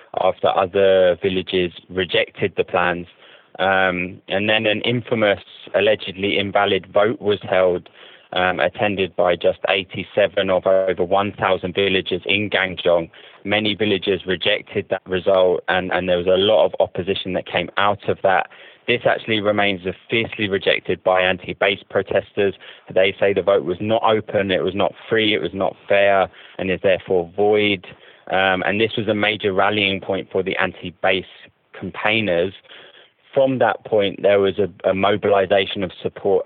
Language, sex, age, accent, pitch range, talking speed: English, male, 20-39, British, 95-105 Hz, 155 wpm